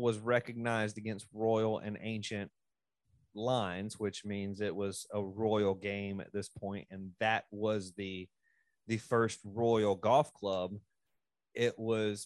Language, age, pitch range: English, 30-49, 95-110 Hz